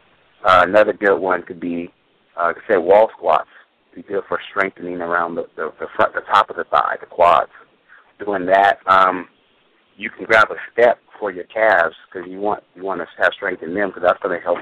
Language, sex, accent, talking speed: English, male, American, 215 wpm